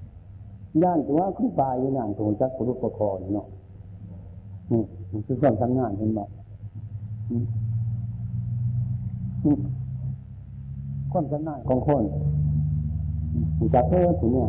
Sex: male